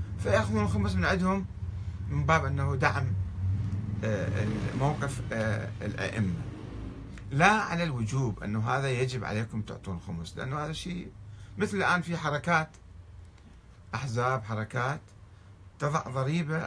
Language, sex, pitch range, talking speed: Arabic, male, 100-140 Hz, 110 wpm